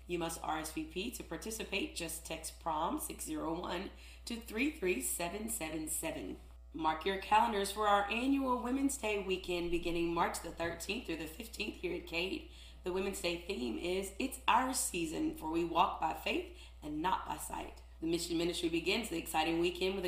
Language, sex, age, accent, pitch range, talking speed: English, female, 30-49, American, 165-260 Hz, 160 wpm